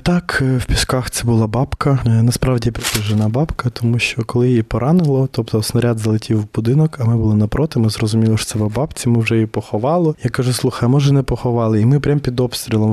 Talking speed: 200 wpm